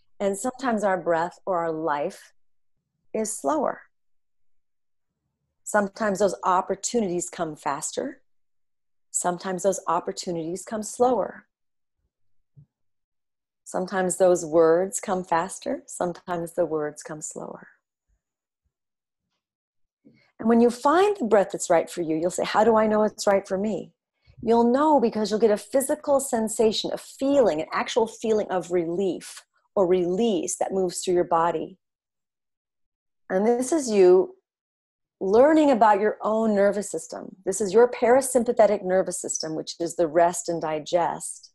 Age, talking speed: 40-59, 135 wpm